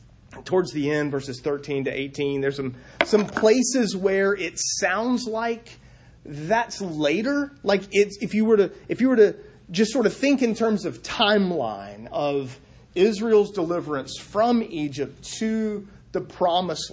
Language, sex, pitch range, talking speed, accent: English, male, 150-220 Hz, 140 wpm, American